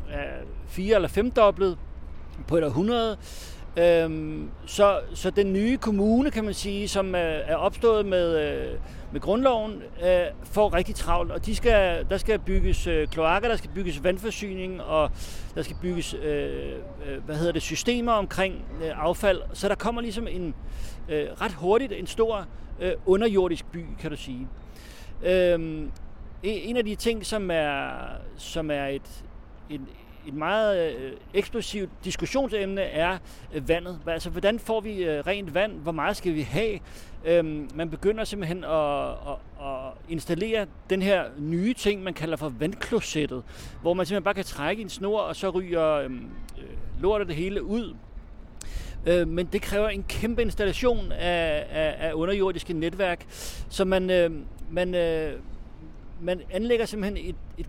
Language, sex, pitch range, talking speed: Danish, male, 155-205 Hz, 135 wpm